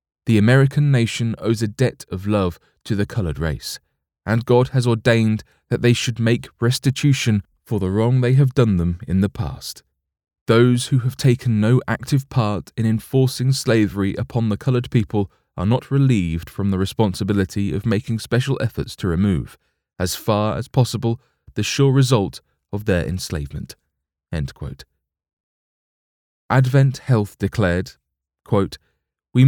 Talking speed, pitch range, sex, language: 145 wpm, 85-125 Hz, male, English